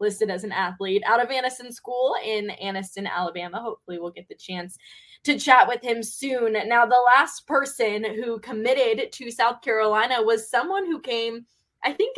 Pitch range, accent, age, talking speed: 195-235 Hz, American, 10-29, 175 wpm